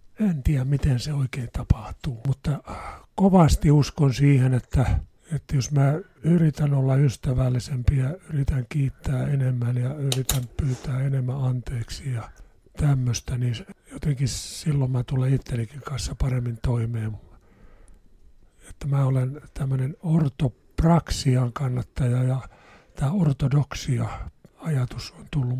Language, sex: Finnish, male